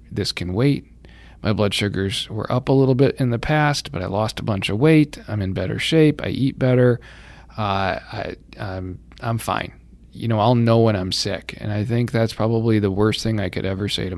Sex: male